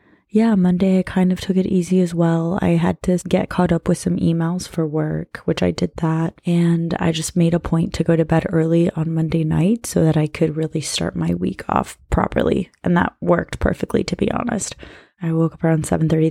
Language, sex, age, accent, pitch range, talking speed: English, female, 20-39, American, 155-190 Hz, 225 wpm